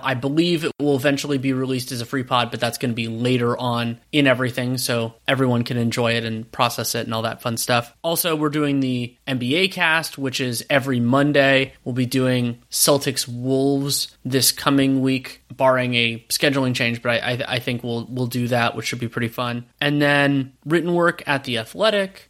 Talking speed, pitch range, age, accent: 205 wpm, 120-145 Hz, 20-39, American